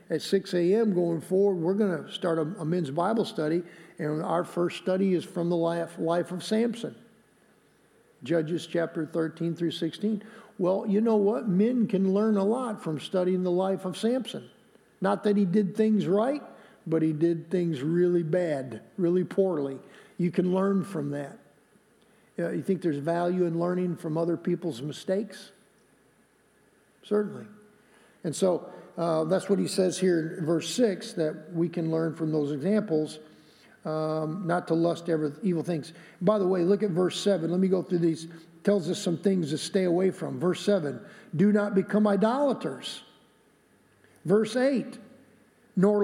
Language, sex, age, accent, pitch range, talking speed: English, male, 50-69, American, 170-215 Hz, 170 wpm